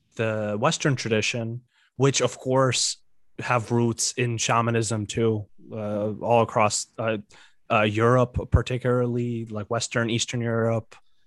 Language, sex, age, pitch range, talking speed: English, male, 20-39, 110-125 Hz, 115 wpm